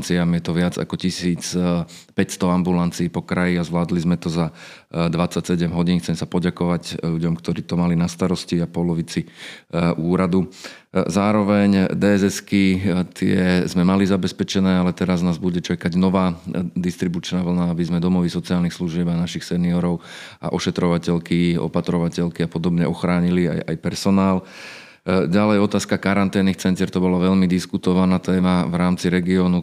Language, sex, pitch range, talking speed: Slovak, male, 85-90 Hz, 140 wpm